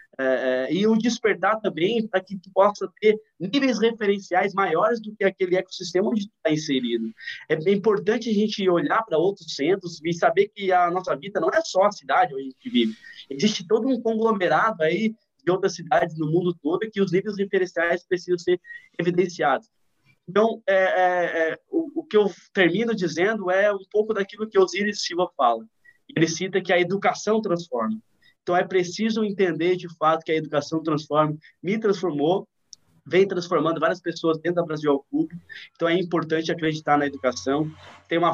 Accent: Brazilian